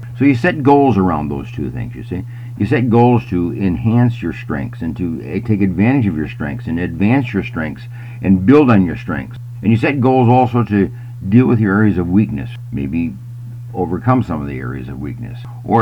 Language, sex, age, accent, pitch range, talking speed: English, male, 60-79, American, 100-120 Hz, 205 wpm